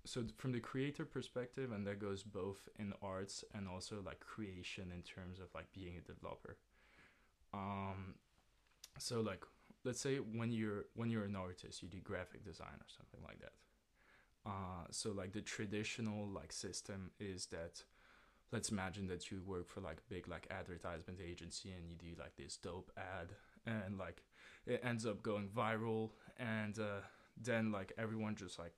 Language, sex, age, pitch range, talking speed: English, male, 20-39, 95-110 Hz, 175 wpm